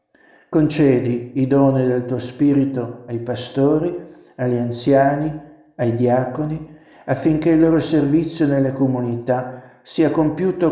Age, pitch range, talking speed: 60-79, 125-150 Hz, 110 wpm